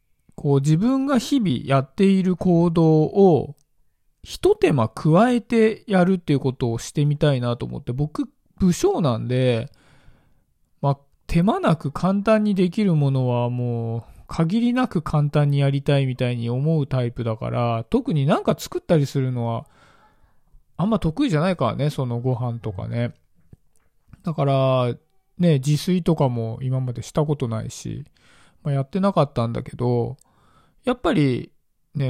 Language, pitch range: Japanese, 130-180 Hz